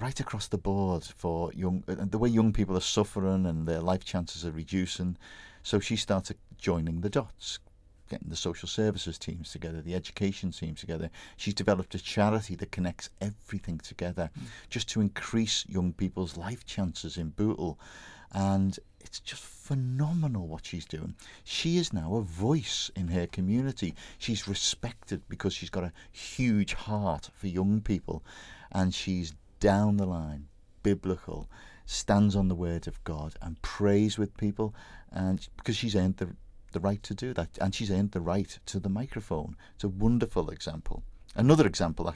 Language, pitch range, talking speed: English, 85-100 Hz, 170 wpm